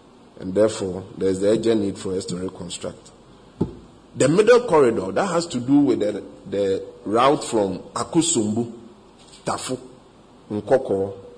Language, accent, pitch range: English, Nigerian, 100-120 Hz